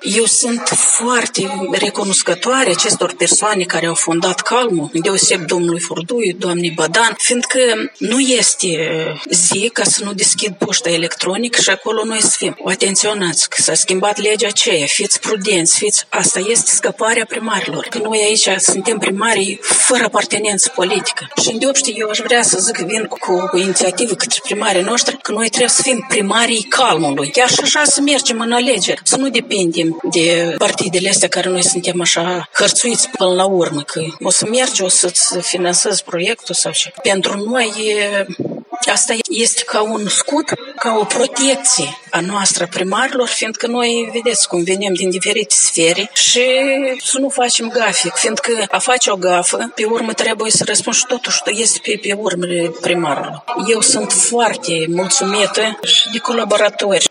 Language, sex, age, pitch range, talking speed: Romanian, female, 40-59, 180-245 Hz, 160 wpm